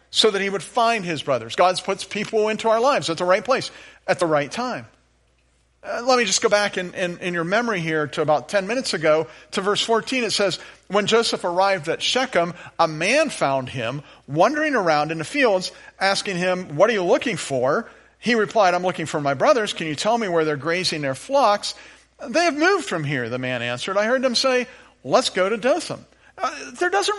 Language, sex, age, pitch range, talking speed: English, male, 50-69, 140-215 Hz, 220 wpm